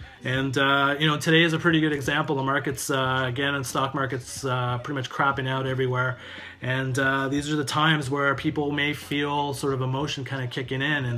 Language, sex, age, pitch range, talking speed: English, male, 30-49, 120-145 Hz, 220 wpm